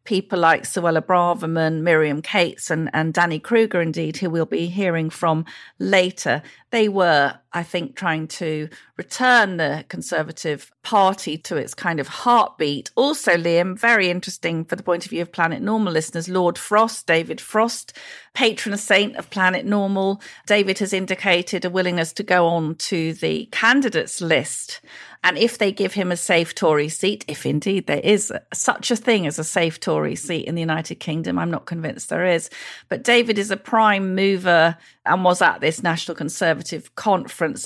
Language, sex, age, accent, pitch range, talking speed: English, female, 40-59, British, 160-195 Hz, 175 wpm